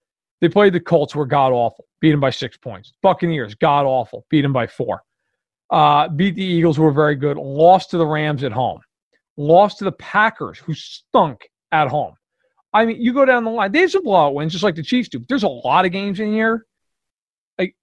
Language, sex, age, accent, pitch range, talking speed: English, male, 40-59, American, 150-205 Hz, 220 wpm